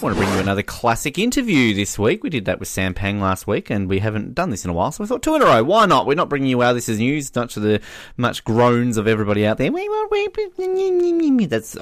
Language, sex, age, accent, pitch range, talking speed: English, male, 20-39, Australian, 95-140 Hz, 275 wpm